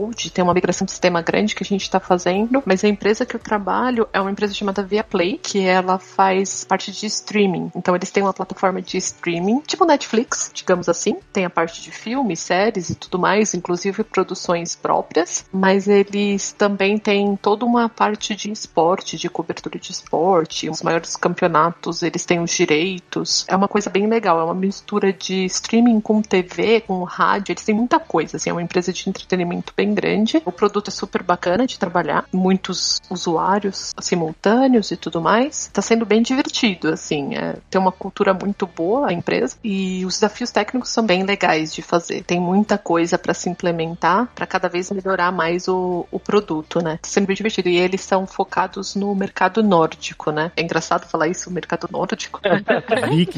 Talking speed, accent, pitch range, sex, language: 185 wpm, Brazilian, 175-210 Hz, female, Portuguese